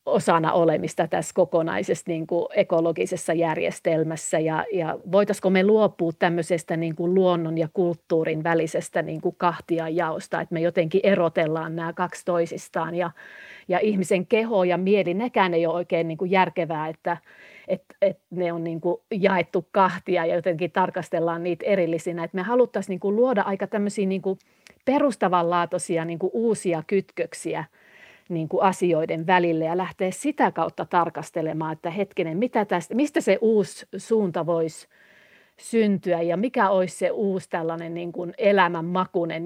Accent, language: native, Finnish